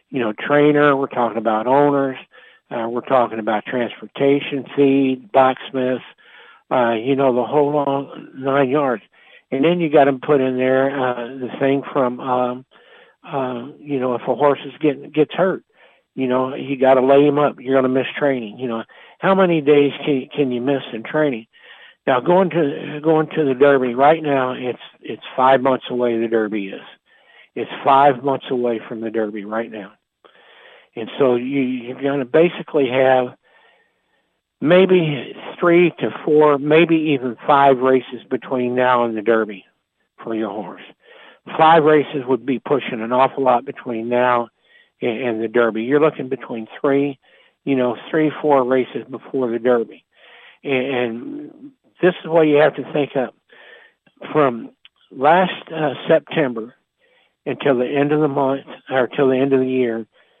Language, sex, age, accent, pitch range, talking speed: English, male, 60-79, American, 125-145 Hz, 170 wpm